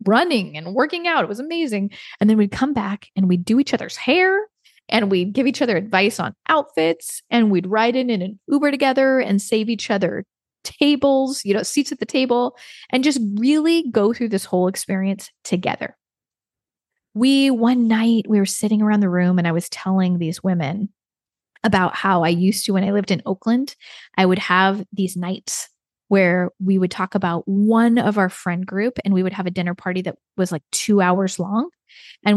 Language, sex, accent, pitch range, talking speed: English, female, American, 185-230 Hz, 200 wpm